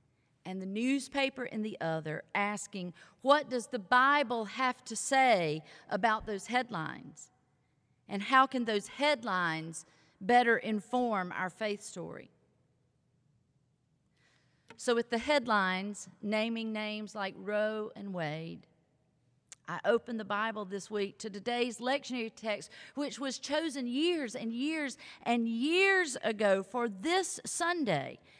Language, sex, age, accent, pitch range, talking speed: English, female, 40-59, American, 170-255 Hz, 125 wpm